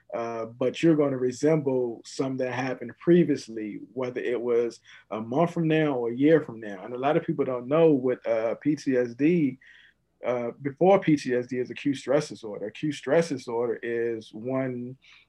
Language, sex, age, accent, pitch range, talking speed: English, male, 40-59, American, 125-145 Hz, 175 wpm